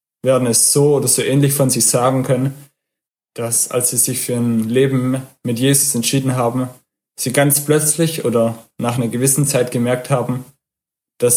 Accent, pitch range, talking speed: German, 120-140 Hz, 170 wpm